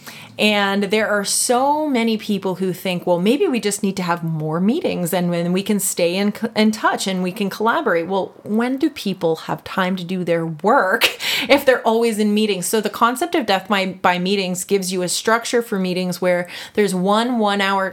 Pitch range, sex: 170-210 Hz, female